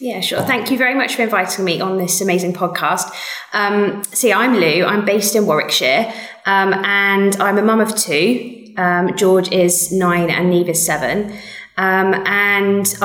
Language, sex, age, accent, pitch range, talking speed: English, female, 20-39, British, 170-210 Hz, 175 wpm